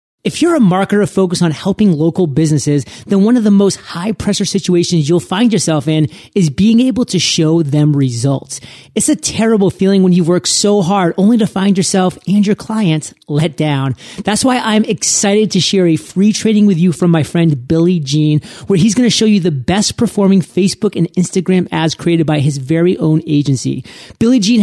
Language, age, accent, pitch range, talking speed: English, 30-49, American, 160-205 Hz, 200 wpm